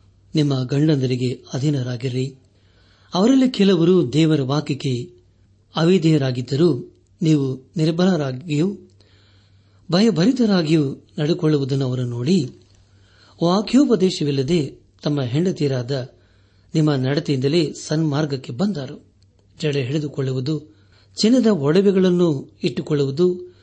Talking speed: 65 wpm